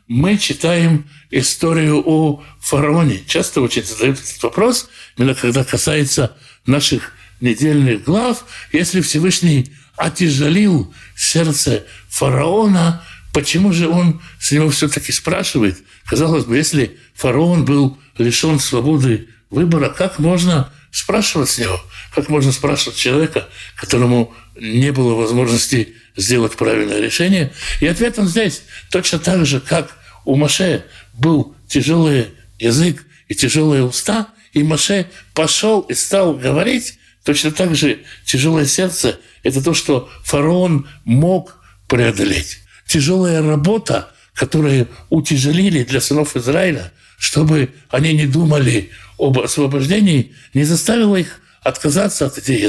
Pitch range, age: 125-165 Hz, 60-79